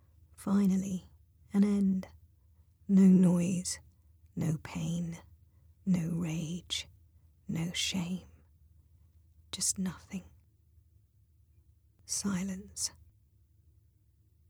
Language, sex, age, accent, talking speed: English, female, 40-59, British, 60 wpm